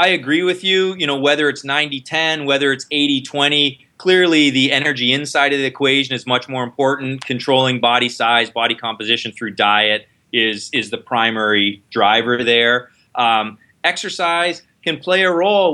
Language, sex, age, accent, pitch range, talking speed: English, male, 20-39, American, 125-160 Hz, 160 wpm